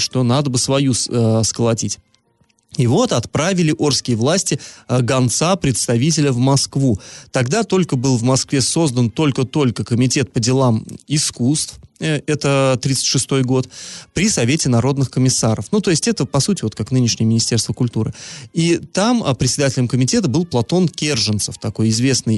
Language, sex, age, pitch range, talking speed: Russian, male, 30-49, 120-150 Hz, 140 wpm